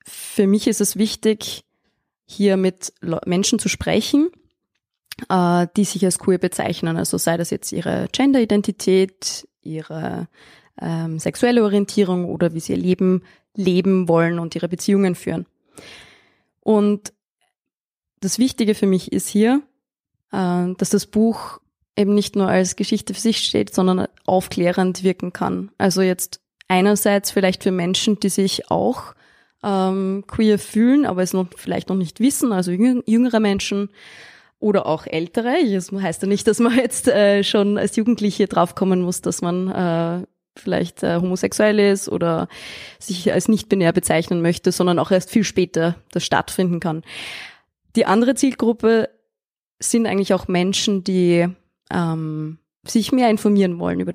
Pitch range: 180-215 Hz